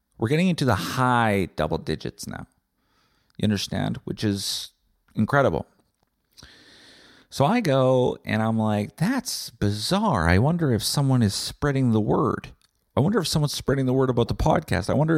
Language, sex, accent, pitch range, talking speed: English, male, American, 95-125 Hz, 160 wpm